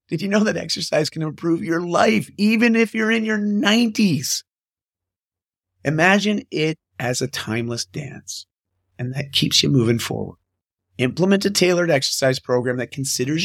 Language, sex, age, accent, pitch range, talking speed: English, male, 30-49, American, 120-185 Hz, 150 wpm